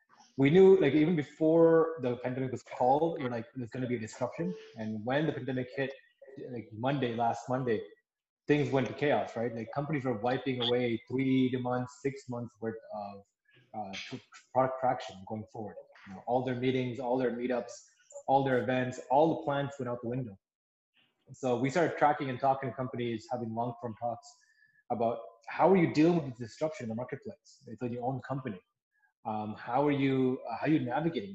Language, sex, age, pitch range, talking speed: English, male, 20-39, 120-145 Hz, 190 wpm